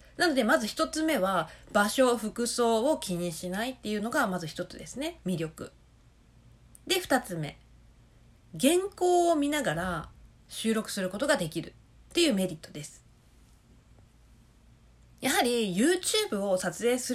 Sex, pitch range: female, 180-295 Hz